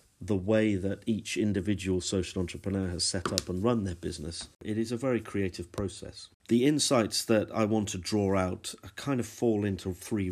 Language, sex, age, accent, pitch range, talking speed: English, male, 40-59, British, 90-110 Hz, 200 wpm